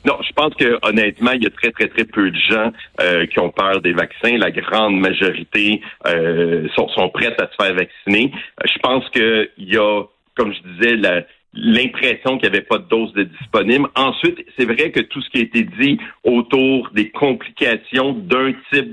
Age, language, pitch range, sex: 60-79, French, 110-145 Hz, male